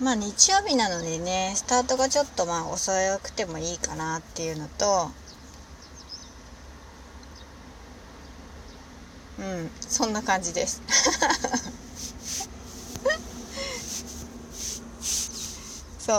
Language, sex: Japanese, female